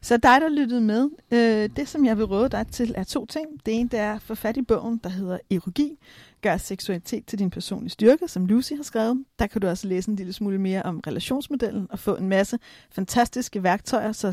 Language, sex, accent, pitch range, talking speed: Danish, female, native, 195-250 Hz, 230 wpm